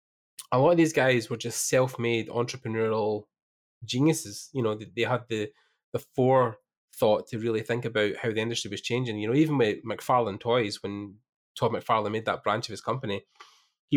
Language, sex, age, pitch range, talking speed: English, male, 20-39, 110-125 Hz, 190 wpm